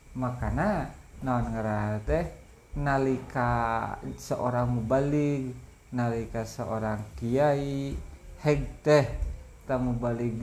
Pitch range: 110-135 Hz